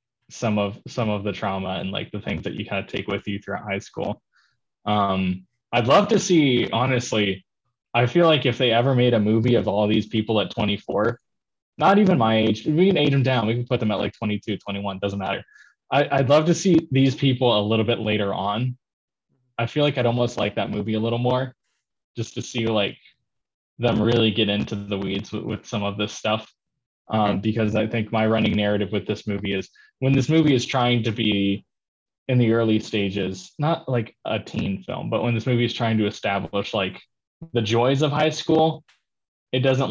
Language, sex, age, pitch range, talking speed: English, male, 20-39, 105-125 Hz, 215 wpm